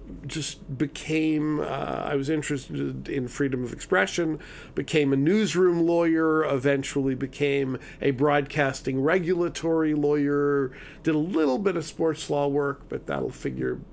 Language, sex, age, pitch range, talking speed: English, male, 50-69, 135-155 Hz, 135 wpm